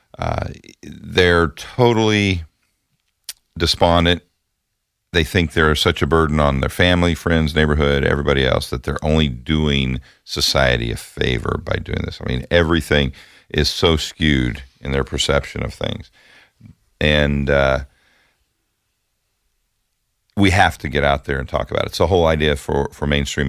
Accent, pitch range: American, 70-85 Hz